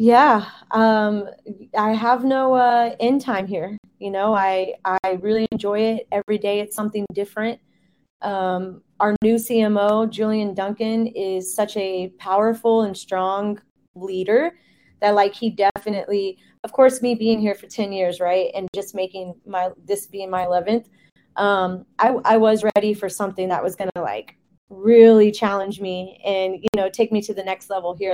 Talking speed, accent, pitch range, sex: 170 wpm, American, 190-225 Hz, female